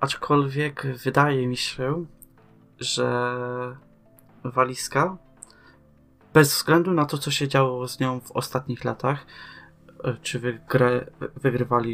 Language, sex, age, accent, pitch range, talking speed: Polish, male, 20-39, native, 125-145 Hz, 100 wpm